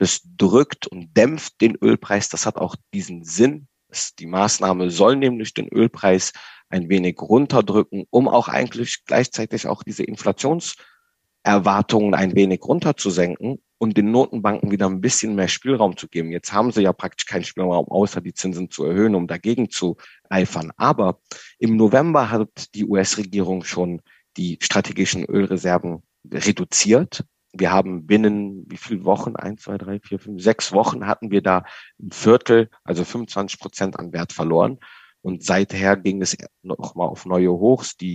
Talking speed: 155 wpm